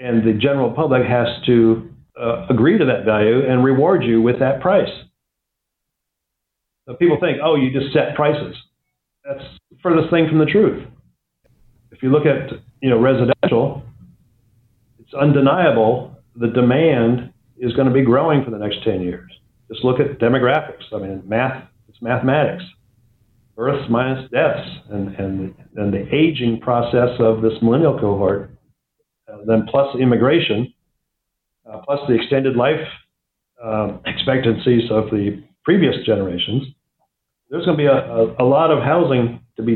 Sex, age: male, 50-69